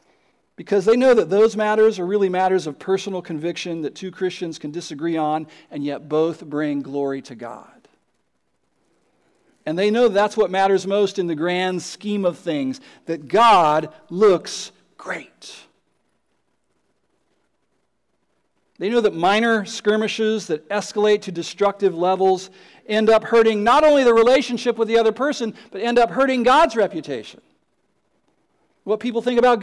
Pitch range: 185-240 Hz